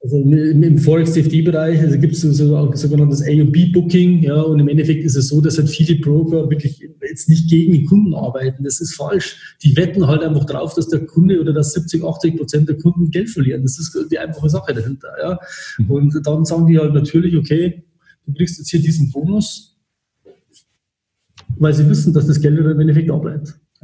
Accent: German